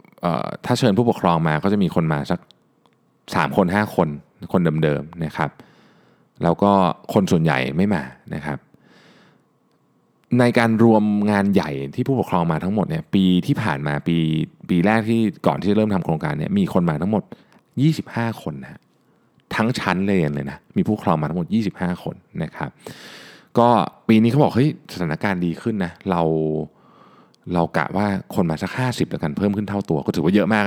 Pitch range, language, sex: 80-115 Hz, Thai, male